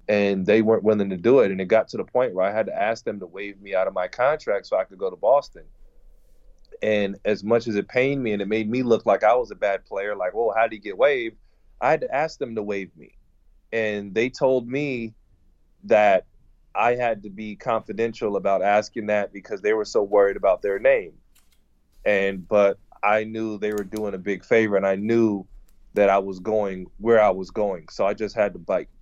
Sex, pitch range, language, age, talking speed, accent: male, 100-115 Hz, English, 20-39, 235 wpm, American